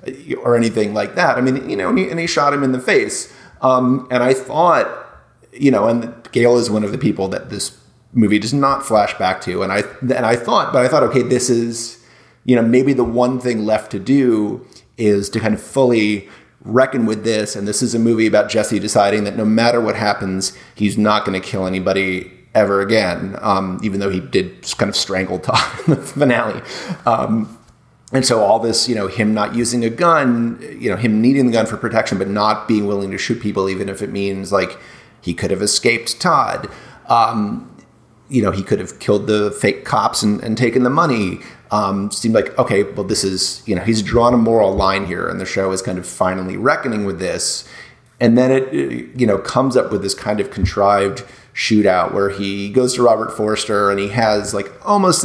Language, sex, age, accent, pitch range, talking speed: English, male, 30-49, American, 100-125 Hz, 215 wpm